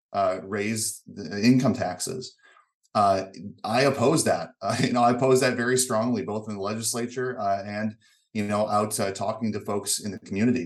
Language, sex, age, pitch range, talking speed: English, male, 30-49, 100-115 Hz, 185 wpm